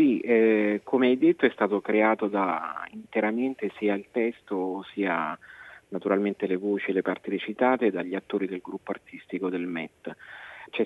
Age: 40-59